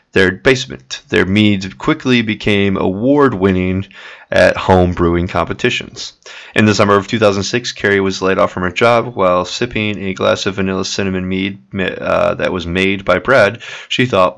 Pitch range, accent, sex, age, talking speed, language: 95-115 Hz, American, male, 20-39, 165 wpm, English